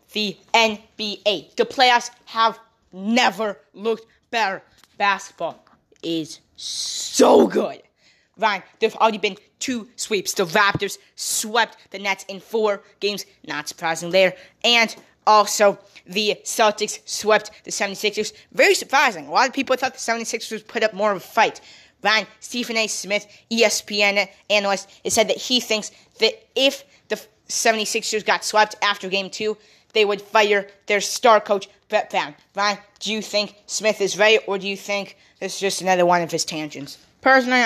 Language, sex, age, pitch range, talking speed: English, female, 20-39, 200-235 Hz, 155 wpm